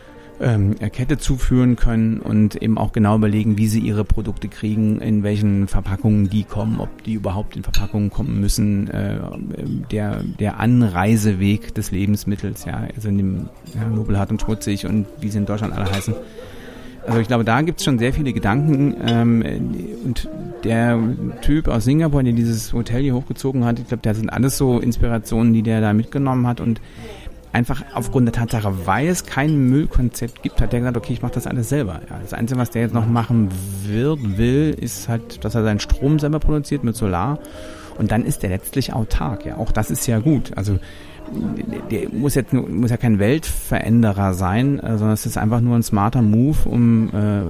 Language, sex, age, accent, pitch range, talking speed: German, male, 40-59, German, 105-120 Hz, 185 wpm